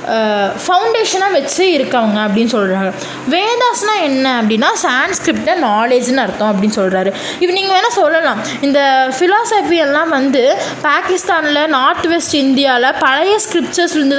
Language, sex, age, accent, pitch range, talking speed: Tamil, female, 20-39, native, 260-350 Hz, 115 wpm